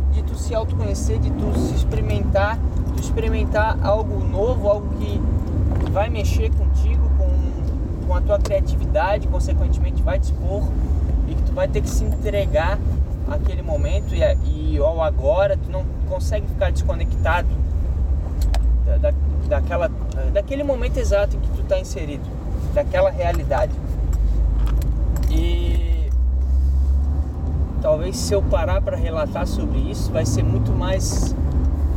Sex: male